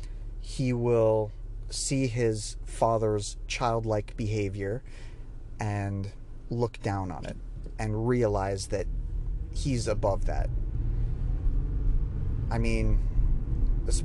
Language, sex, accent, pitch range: English, male, American, 110-120 Hz